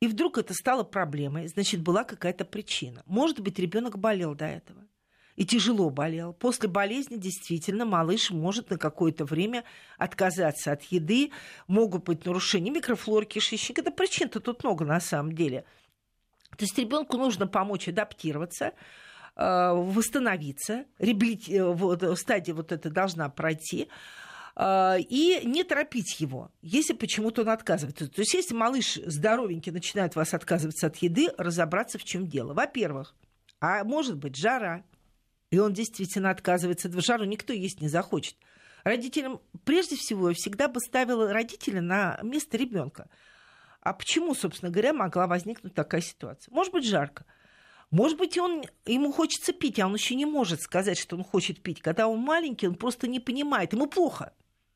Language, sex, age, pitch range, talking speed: Russian, female, 50-69, 175-240 Hz, 155 wpm